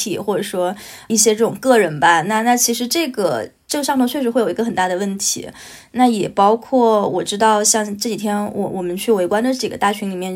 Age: 20-39